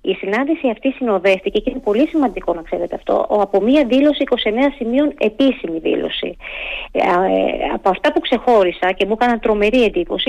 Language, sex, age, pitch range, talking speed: Greek, female, 30-49, 190-265 Hz, 165 wpm